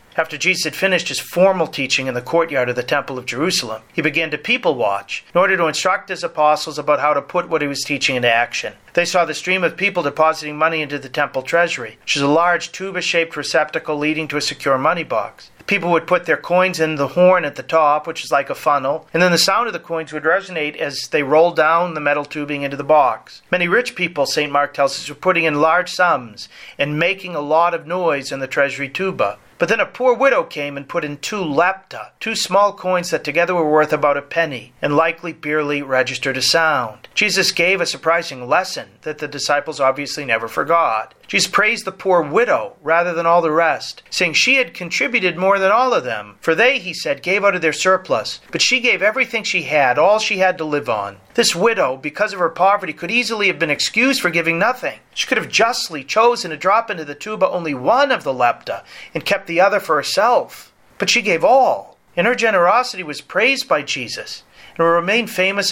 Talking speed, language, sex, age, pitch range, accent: 225 wpm, English, male, 40-59, 145-185 Hz, American